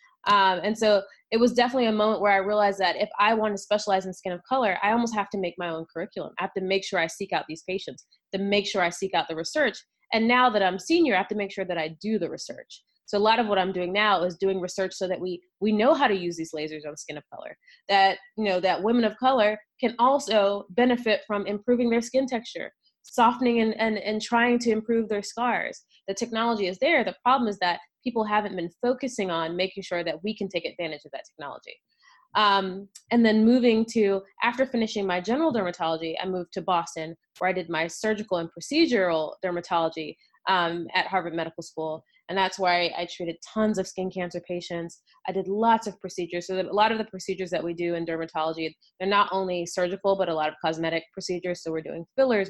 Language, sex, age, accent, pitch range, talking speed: English, female, 20-39, American, 175-220 Hz, 230 wpm